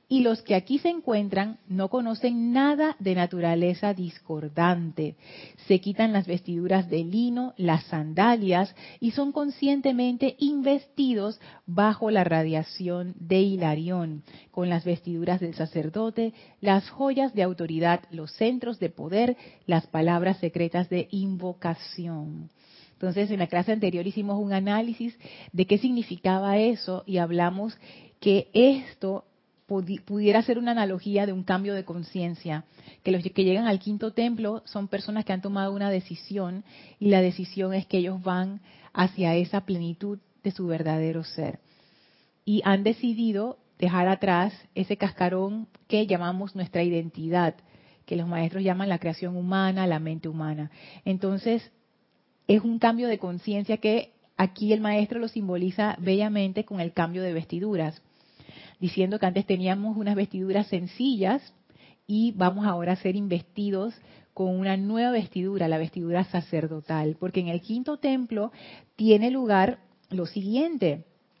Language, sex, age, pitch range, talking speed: Spanish, female, 30-49, 175-215 Hz, 140 wpm